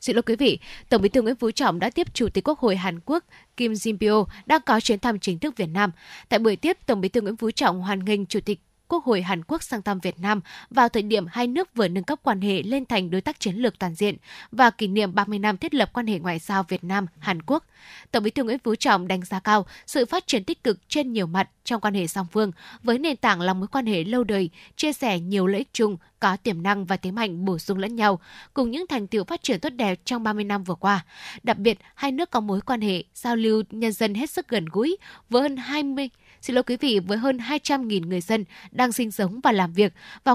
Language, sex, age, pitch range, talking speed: Vietnamese, female, 10-29, 195-250 Hz, 265 wpm